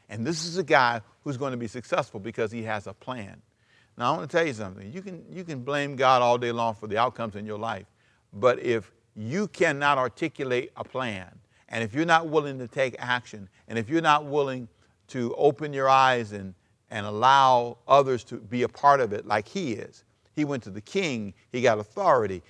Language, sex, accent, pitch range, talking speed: English, male, American, 110-145 Hz, 220 wpm